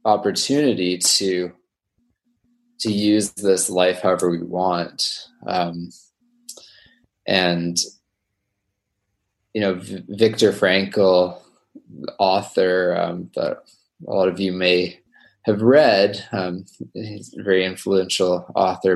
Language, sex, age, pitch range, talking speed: English, male, 20-39, 90-110 Hz, 100 wpm